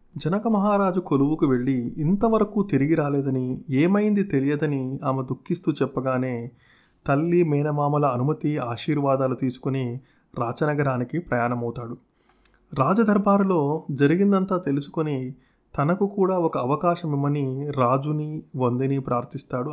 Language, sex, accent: Telugu, male, native